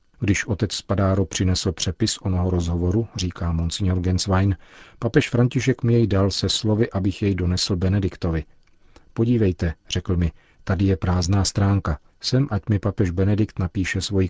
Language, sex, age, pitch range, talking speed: Czech, male, 40-59, 90-105 Hz, 145 wpm